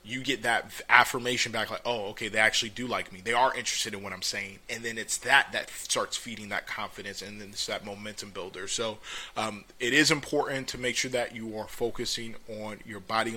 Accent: American